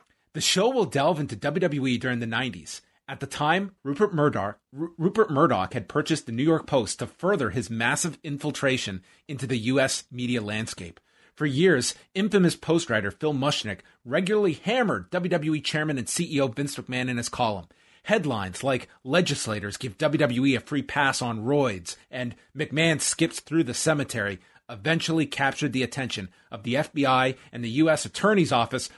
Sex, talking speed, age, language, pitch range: male, 155 wpm, 30-49, English, 120-155 Hz